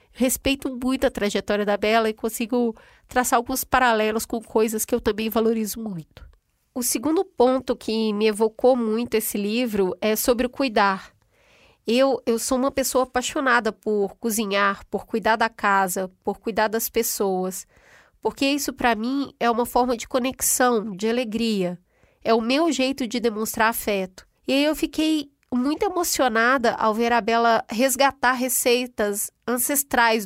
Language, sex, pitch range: Portuguese, female, 215-260 Hz